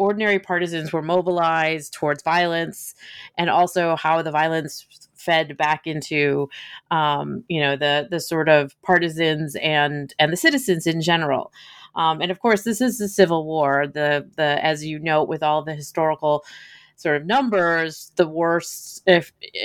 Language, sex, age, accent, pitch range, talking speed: English, female, 30-49, American, 150-195 Hz, 160 wpm